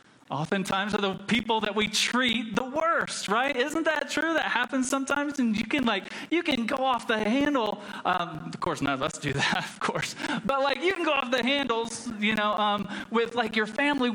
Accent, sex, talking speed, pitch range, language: American, male, 210 wpm, 165-225 Hz, English